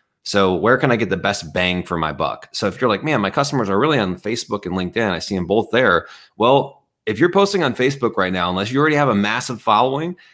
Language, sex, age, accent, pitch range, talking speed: English, male, 30-49, American, 95-135 Hz, 255 wpm